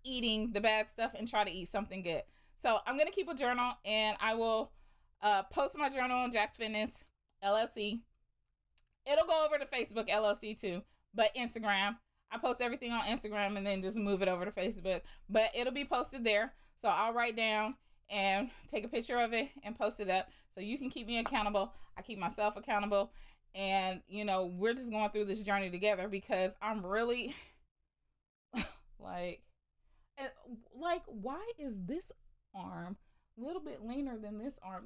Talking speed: 180 wpm